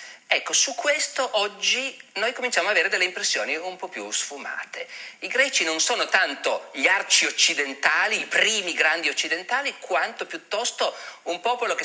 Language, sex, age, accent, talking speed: Italian, male, 40-59, native, 155 wpm